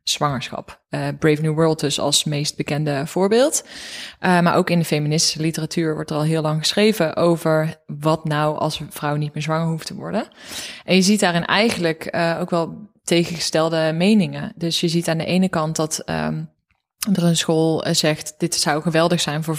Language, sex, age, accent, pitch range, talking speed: Dutch, female, 20-39, Dutch, 155-170 Hz, 190 wpm